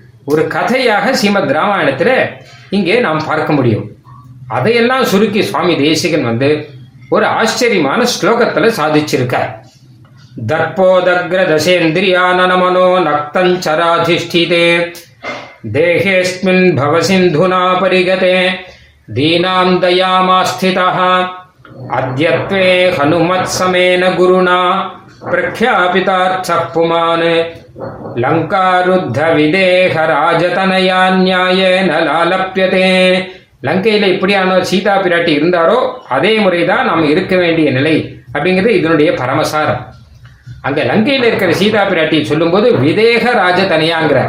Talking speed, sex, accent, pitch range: 50 wpm, male, native, 155-185 Hz